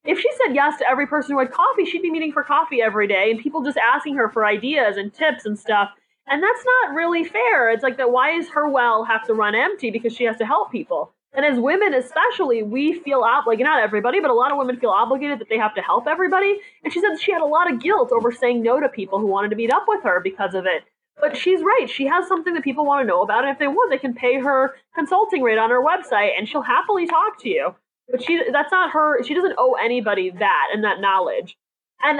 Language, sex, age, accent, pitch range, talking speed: English, female, 20-39, American, 225-345 Hz, 265 wpm